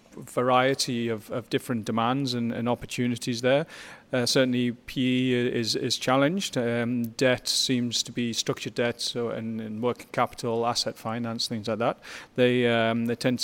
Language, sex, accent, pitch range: English, male, British, 115-125 Hz